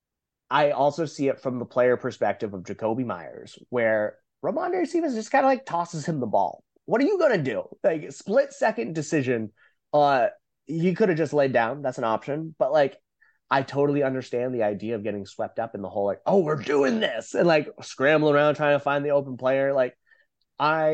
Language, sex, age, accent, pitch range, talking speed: English, male, 30-49, American, 120-155 Hz, 205 wpm